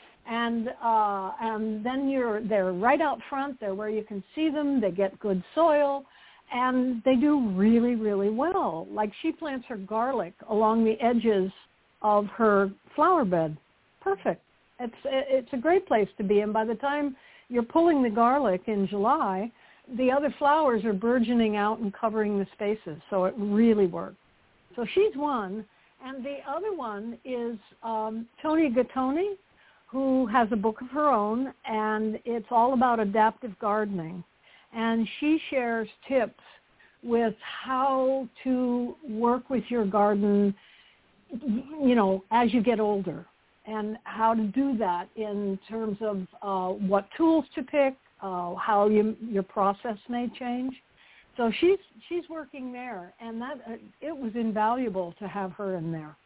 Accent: American